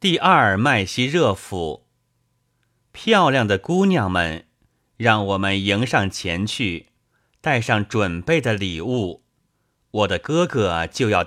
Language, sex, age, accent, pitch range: Chinese, male, 30-49, native, 100-140 Hz